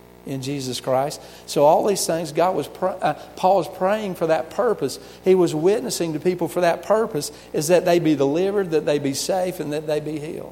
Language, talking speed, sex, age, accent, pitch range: English, 215 wpm, male, 50-69, American, 120-155 Hz